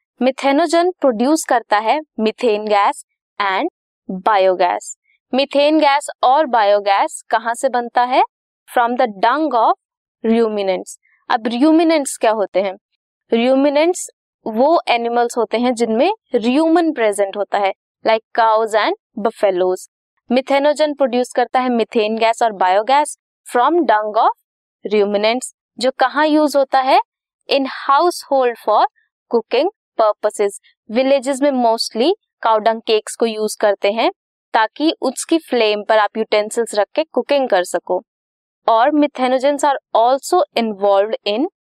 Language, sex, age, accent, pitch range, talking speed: Hindi, female, 20-39, native, 220-290 Hz, 120 wpm